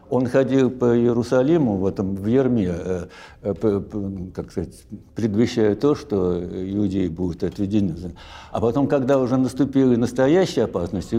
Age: 60-79